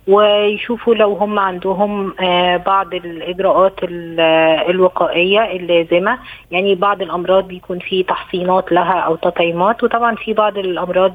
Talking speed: 120 wpm